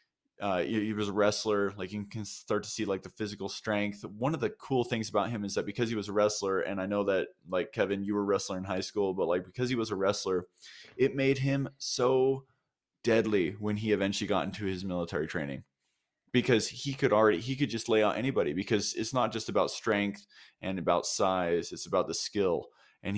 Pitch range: 95-110 Hz